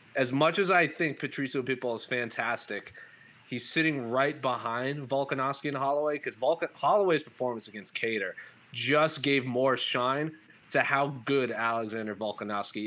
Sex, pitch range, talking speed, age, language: male, 115-140 Hz, 140 wpm, 30-49, English